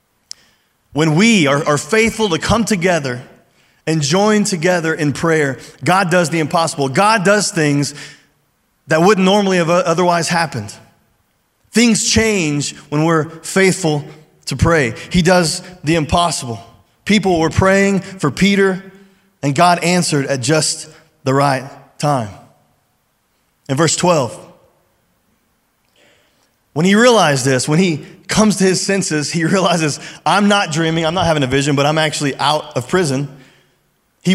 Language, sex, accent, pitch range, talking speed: English, male, American, 150-190 Hz, 140 wpm